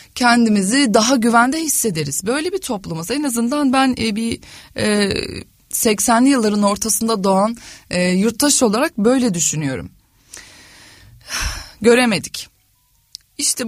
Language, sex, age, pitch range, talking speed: Turkish, female, 30-49, 185-270 Hz, 90 wpm